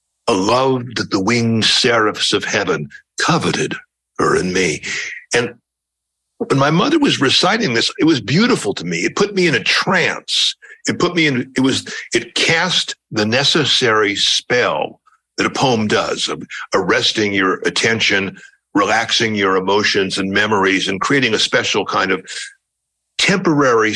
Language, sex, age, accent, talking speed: English, male, 60-79, American, 155 wpm